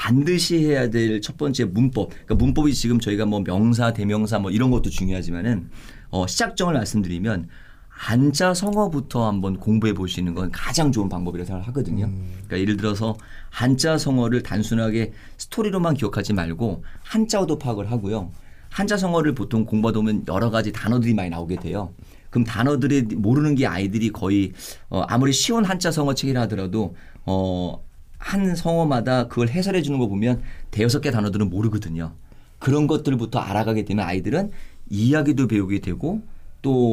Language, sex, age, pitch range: Korean, male, 40-59, 100-140 Hz